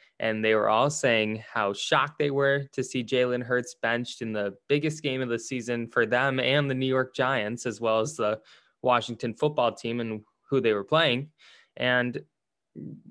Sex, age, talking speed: male, 20-39, 190 wpm